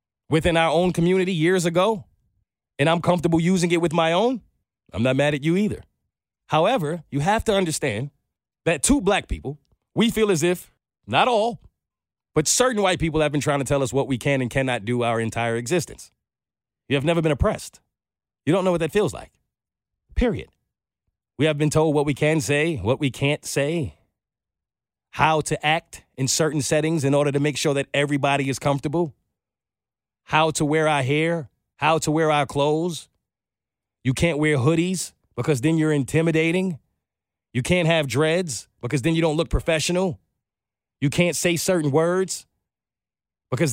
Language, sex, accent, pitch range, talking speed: English, male, American, 135-175 Hz, 175 wpm